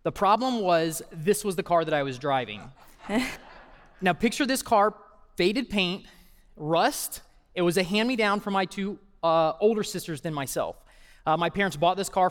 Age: 20-39